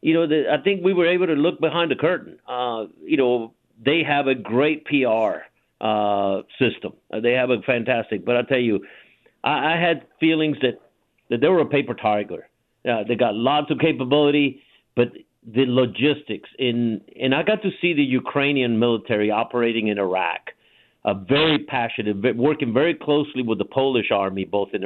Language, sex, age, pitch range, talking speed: English, male, 50-69, 115-150 Hz, 185 wpm